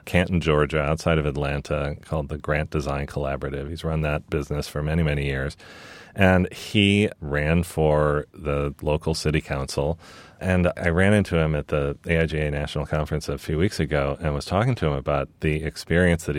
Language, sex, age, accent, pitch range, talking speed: English, male, 40-59, American, 70-85 Hz, 180 wpm